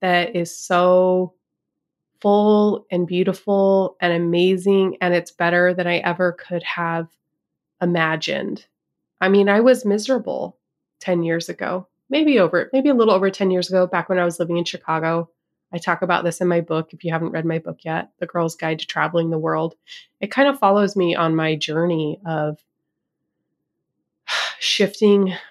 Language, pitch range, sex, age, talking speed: English, 165-195 Hz, female, 20-39, 170 wpm